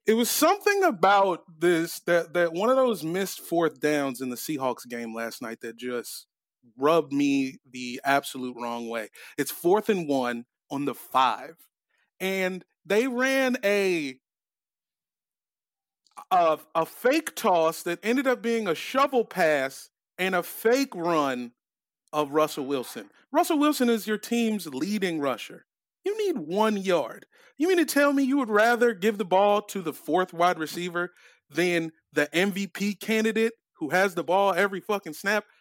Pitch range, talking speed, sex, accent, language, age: 170-255 Hz, 160 wpm, male, American, English, 30-49